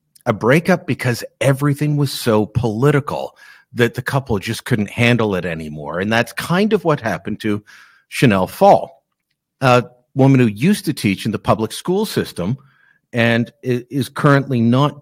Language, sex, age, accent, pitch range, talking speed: English, male, 50-69, American, 110-150 Hz, 155 wpm